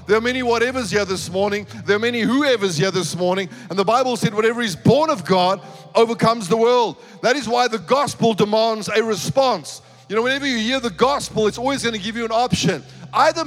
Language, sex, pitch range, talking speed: English, male, 200-235 Hz, 225 wpm